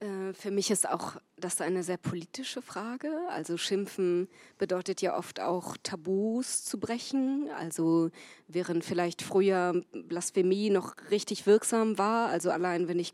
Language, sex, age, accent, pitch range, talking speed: German, female, 20-39, German, 175-210 Hz, 140 wpm